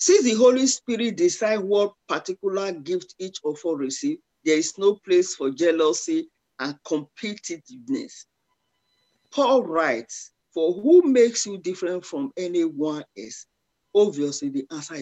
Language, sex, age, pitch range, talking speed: English, male, 40-59, 175-290 Hz, 130 wpm